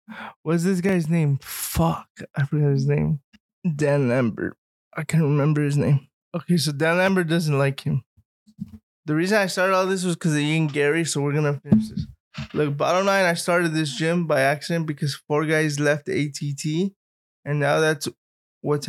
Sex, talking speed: male, 185 wpm